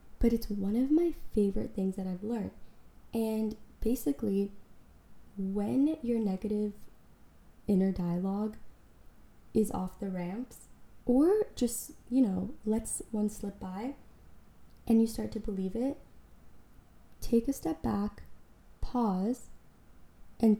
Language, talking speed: English, 120 wpm